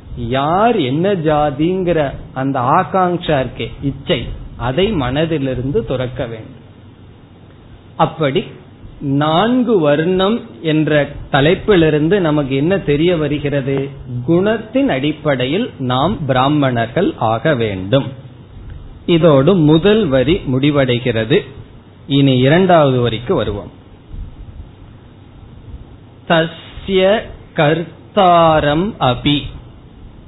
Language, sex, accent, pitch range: Tamil, male, native, 125-165 Hz